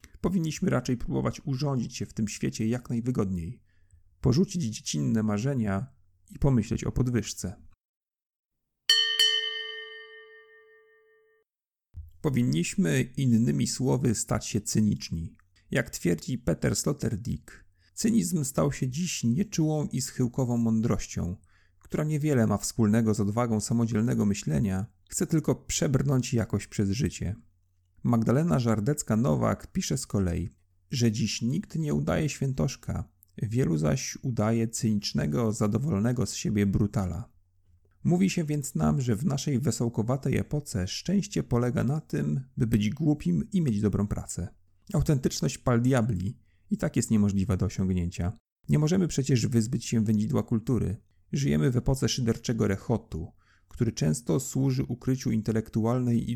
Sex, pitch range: male, 100-140 Hz